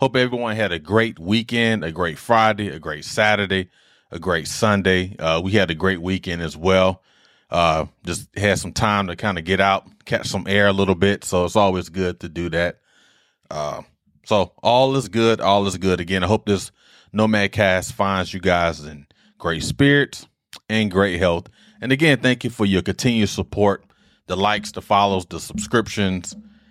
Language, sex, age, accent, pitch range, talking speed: English, male, 30-49, American, 90-115 Hz, 185 wpm